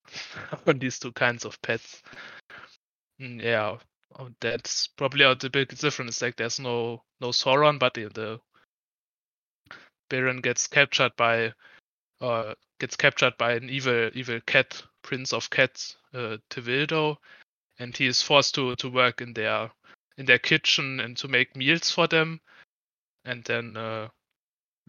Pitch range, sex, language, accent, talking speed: 120-140 Hz, male, English, German, 140 wpm